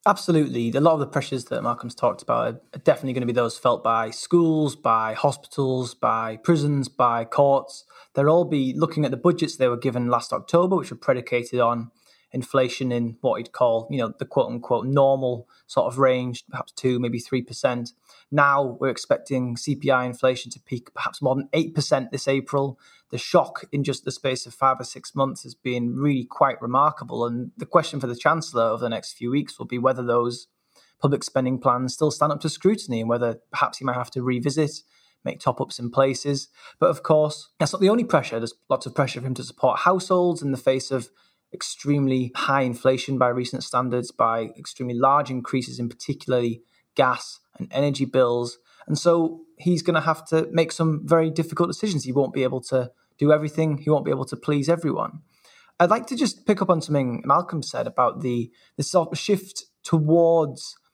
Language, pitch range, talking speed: English, 125-155 Hz, 200 wpm